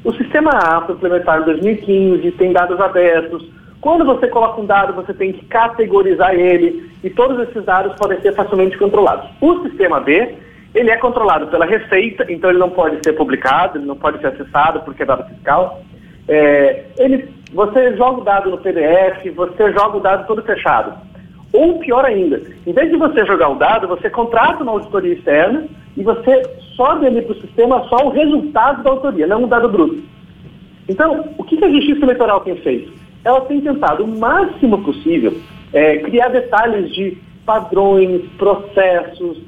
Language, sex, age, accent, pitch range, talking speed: Portuguese, male, 40-59, Brazilian, 185-270 Hz, 170 wpm